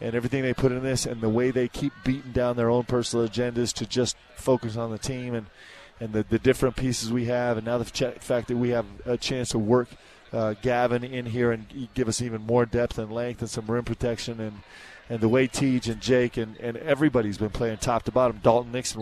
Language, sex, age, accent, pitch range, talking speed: English, male, 20-39, American, 115-130 Hz, 235 wpm